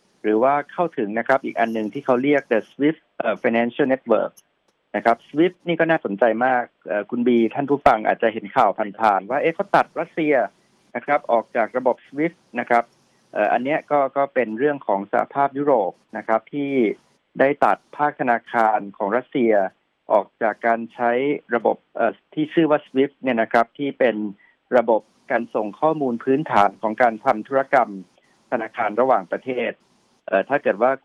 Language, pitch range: Thai, 115-140 Hz